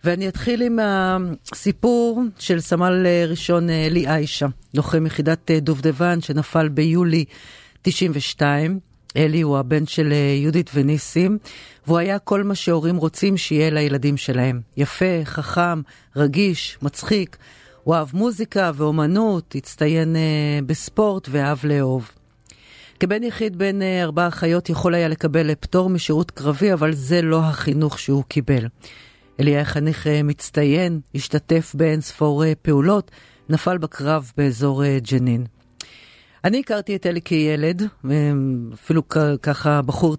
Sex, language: female, Hebrew